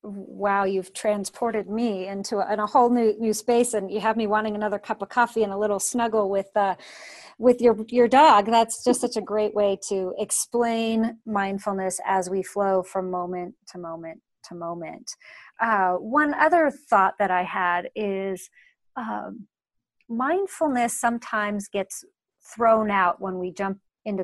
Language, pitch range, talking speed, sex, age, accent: English, 195-240 Hz, 165 wpm, female, 40-59, American